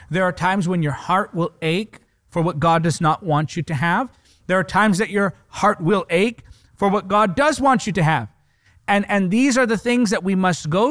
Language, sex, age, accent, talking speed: English, male, 40-59, American, 235 wpm